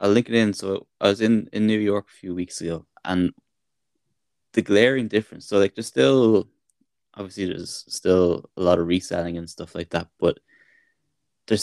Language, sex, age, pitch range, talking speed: English, male, 20-39, 85-100 Hz, 185 wpm